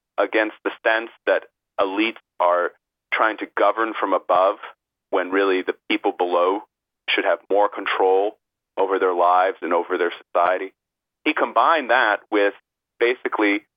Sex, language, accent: male, English, American